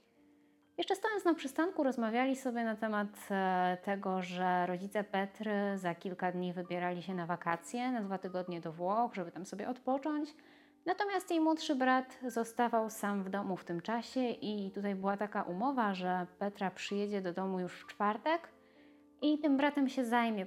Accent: native